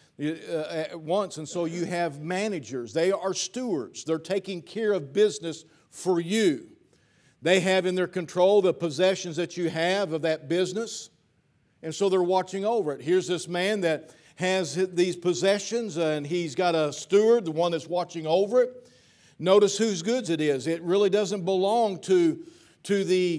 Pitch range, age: 155-195 Hz, 50-69